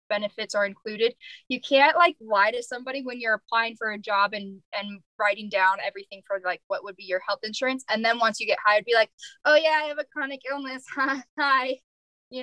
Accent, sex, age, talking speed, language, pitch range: American, female, 10-29, 215 wpm, English, 205-260 Hz